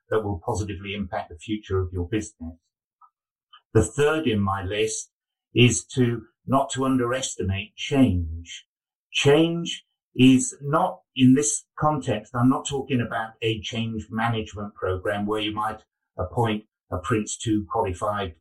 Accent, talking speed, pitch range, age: British, 135 wpm, 100-125 Hz, 50-69